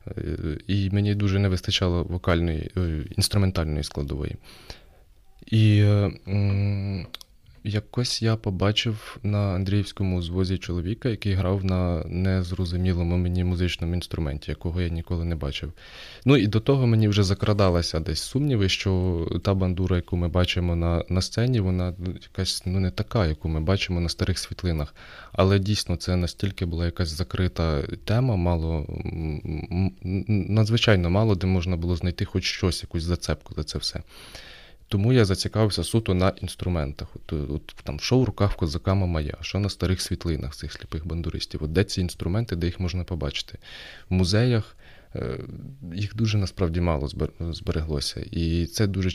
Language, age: Ukrainian, 20-39